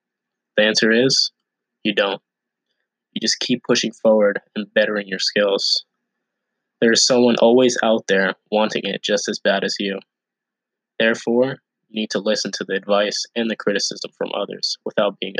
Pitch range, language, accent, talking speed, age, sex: 100-115 Hz, English, American, 165 wpm, 20-39, male